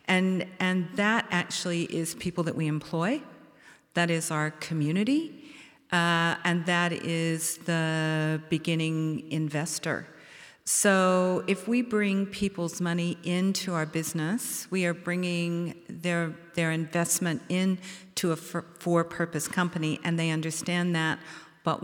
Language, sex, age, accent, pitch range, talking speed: English, female, 50-69, American, 155-185 Hz, 125 wpm